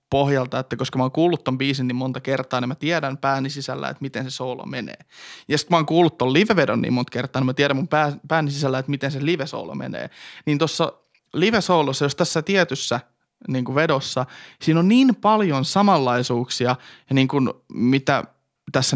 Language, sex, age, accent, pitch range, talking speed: Finnish, male, 20-39, native, 130-155 Hz, 195 wpm